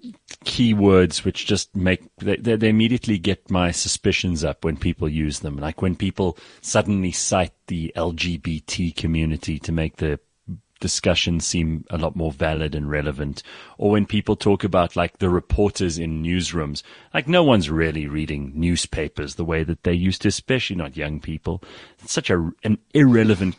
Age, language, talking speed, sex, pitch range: 30-49, English, 165 wpm, male, 85-120 Hz